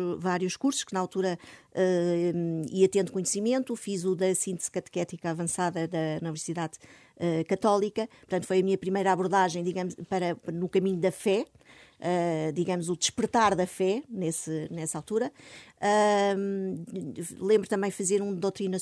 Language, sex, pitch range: Portuguese, female, 175-215 Hz